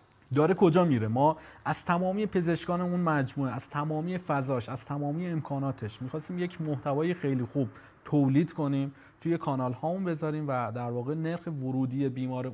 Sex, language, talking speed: male, English, 155 wpm